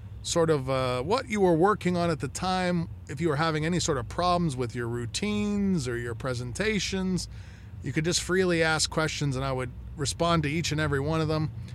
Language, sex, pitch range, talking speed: English, male, 110-155 Hz, 215 wpm